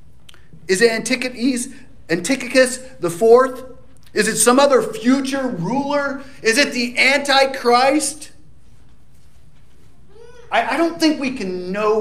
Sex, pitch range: male, 180-255 Hz